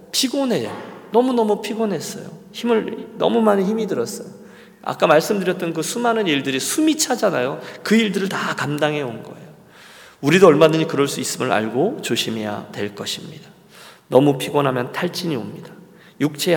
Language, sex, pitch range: Korean, male, 135-195 Hz